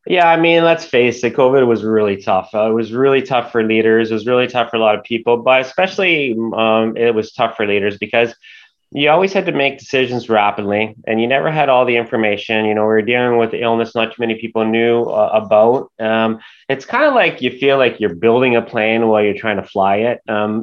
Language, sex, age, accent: English, male, 30-49, American